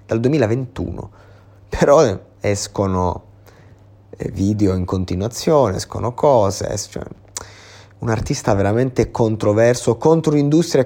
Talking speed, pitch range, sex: 90 wpm, 100-120 Hz, male